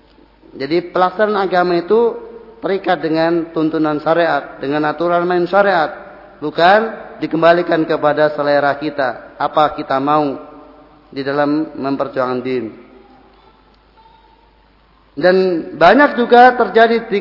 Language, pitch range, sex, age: Indonesian, 165-220 Hz, male, 30-49